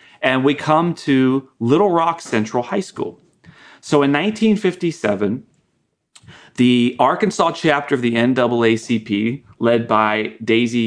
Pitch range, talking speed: 105-130 Hz, 115 wpm